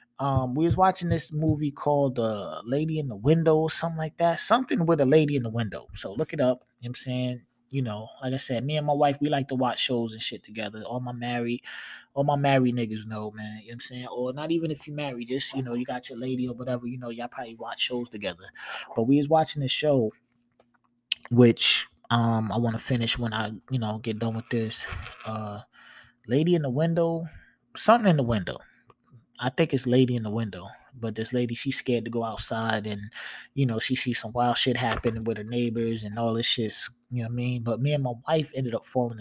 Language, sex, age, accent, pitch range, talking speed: English, male, 20-39, American, 120-150 Hz, 240 wpm